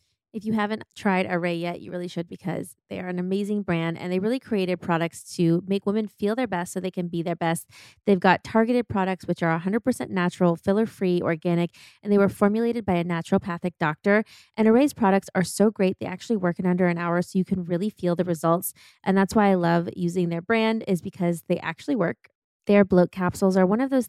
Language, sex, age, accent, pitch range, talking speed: English, female, 20-39, American, 175-215 Hz, 225 wpm